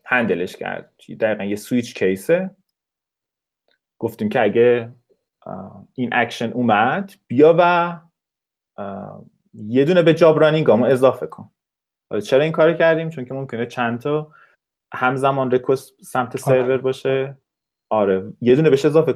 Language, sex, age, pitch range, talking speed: Persian, male, 30-49, 115-170 Hz, 130 wpm